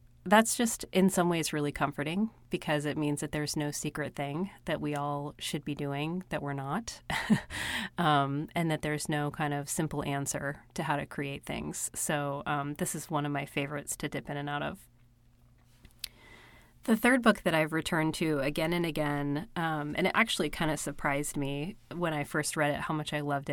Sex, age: female, 30-49